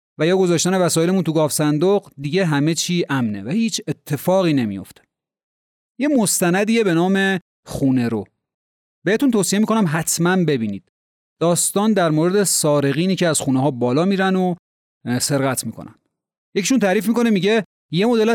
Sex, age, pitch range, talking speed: male, 30-49, 140-195 Hz, 150 wpm